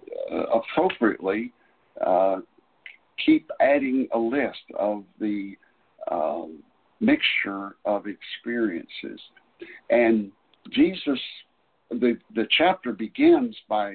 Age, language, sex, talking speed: 60-79, English, male, 85 wpm